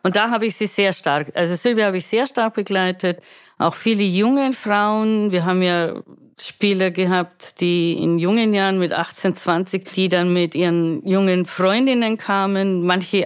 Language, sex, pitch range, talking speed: German, female, 185-230 Hz, 170 wpm